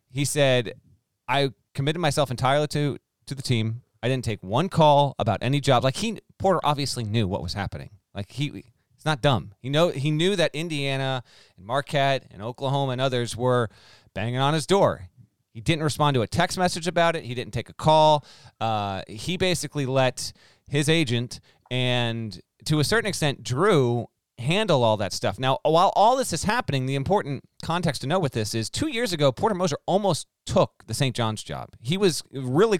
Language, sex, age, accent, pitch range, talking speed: English, male, 30-49, American, 120-165 Hz, 195 wpm